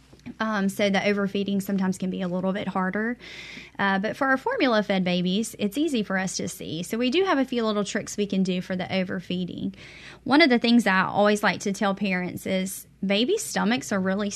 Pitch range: 185-220 Hz